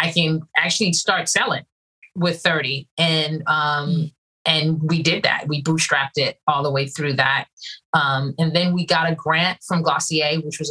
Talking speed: 180 wpm